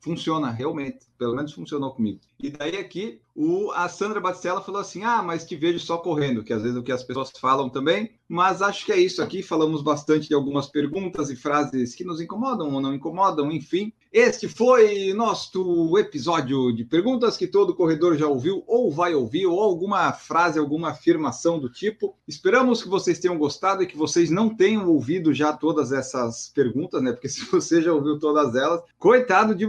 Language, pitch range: Portuguese, 145-205 Hz